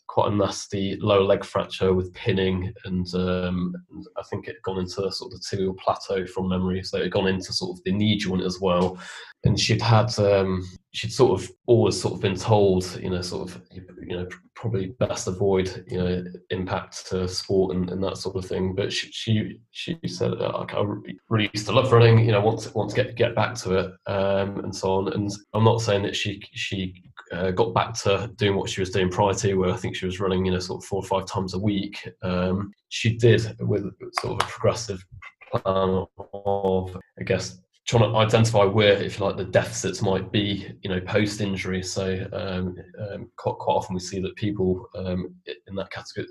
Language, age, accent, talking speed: English, 20-39, British, 220 wpm